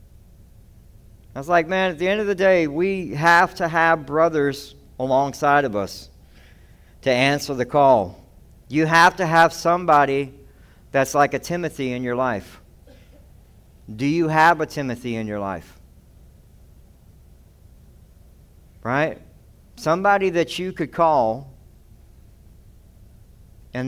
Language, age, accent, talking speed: English, 60-79, American, 125 wpm